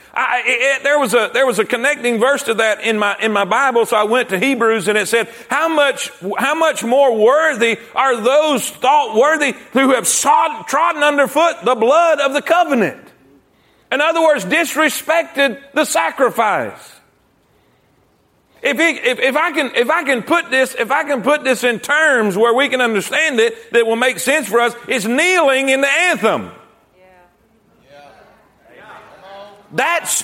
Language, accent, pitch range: English, American, 235-310 Hz